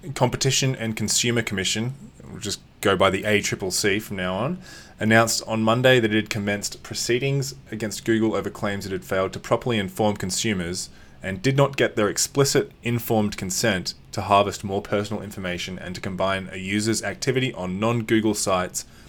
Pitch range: 95-115 Hz